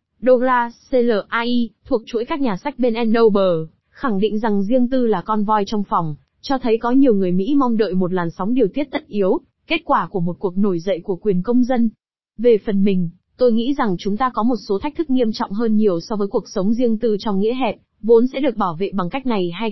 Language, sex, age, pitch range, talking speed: Vietnamese, female, 20-39, 200-250 Hz, 245 wpm